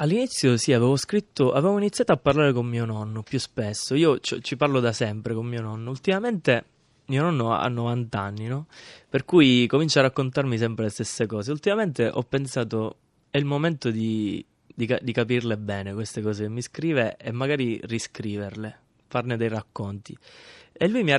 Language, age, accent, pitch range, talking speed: Italian, 20-39, native, 115-145 Hz, 180 wpm